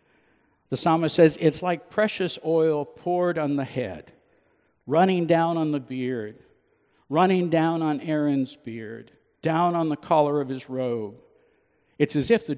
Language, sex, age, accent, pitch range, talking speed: English, male, 60-79, American, 130-170 Hz, 155 wpm